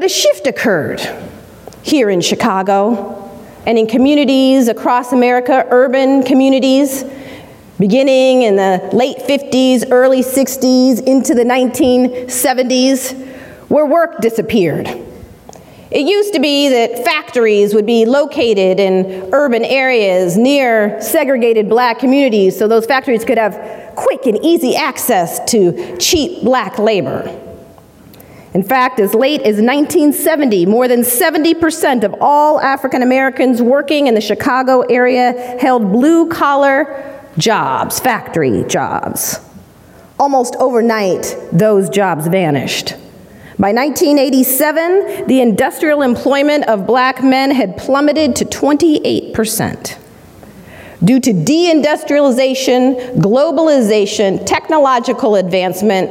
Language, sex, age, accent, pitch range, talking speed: English, female, 40-59, American, 225-280 Hz, 110 wpm